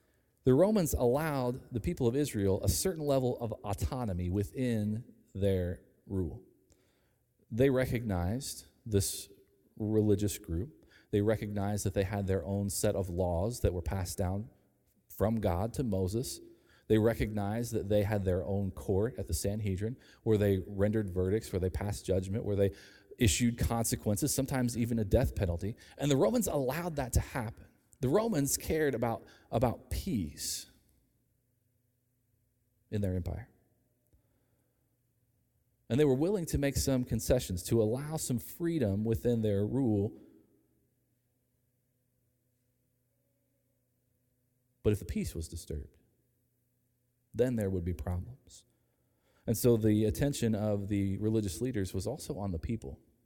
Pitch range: 100-125 Hz